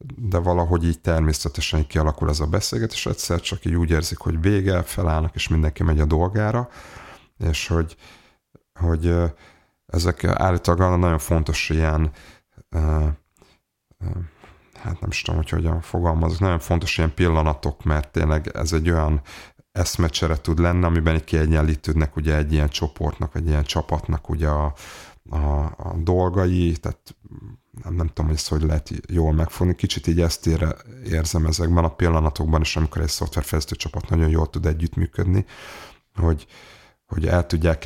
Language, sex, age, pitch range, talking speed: Hungarian, male, 30-49, 80-90 Hz, 150 wpm